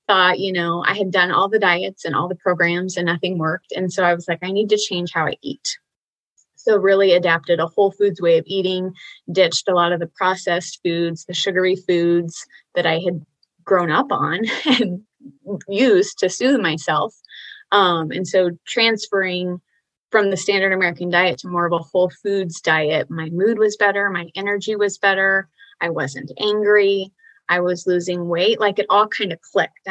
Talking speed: 190 wpm